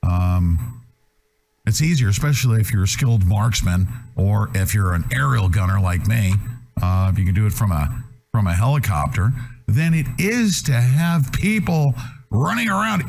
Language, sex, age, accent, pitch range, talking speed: English, male, 50-69, American, 95-130 Hz, 165 wpm